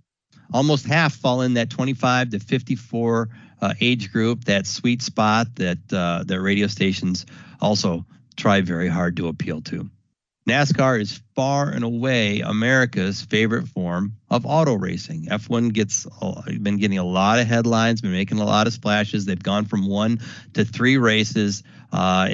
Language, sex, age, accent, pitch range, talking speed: English, male, 40-59, American, 95-115 Hz, 160 wpm